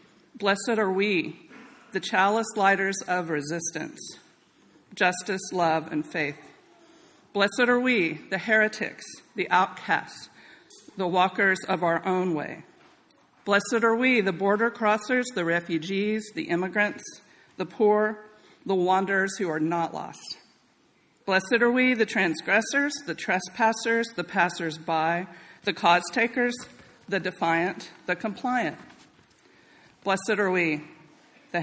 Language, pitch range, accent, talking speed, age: English, 175-215 Hz, American, 120 wpm, 50-69